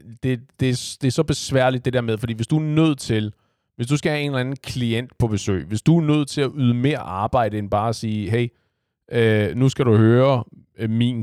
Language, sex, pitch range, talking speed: Danish, male, 100-120 Hz, 230 wpm